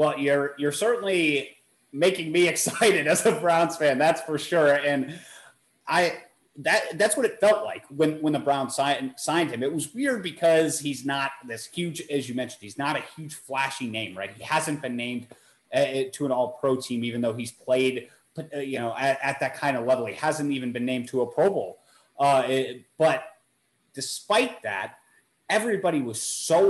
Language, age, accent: English, 30-49, American